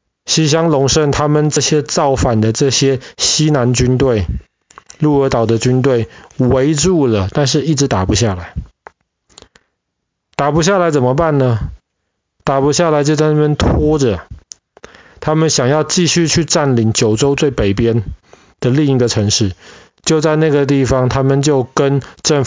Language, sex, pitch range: Chinese, male, 115-150 Hz